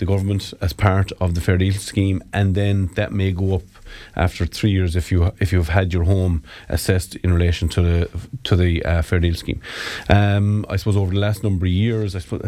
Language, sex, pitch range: English, male, 90-105 Hz